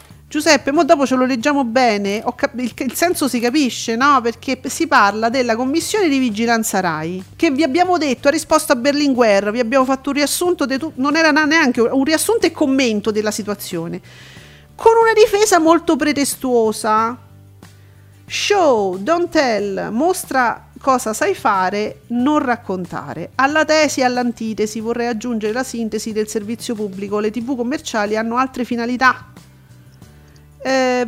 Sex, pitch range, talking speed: female, 210-290 Hz, 145 wpm